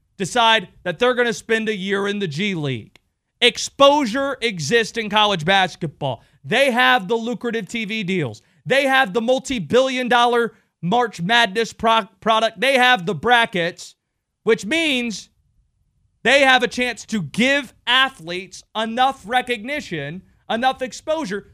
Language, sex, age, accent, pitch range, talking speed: English, male, 30-49, American, 180-245 Hz, 135 wpm